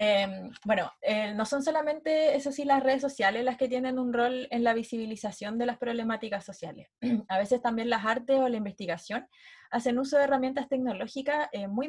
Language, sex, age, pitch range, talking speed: Spanish, female, 20-39, 200-260 Hz, 190 wpm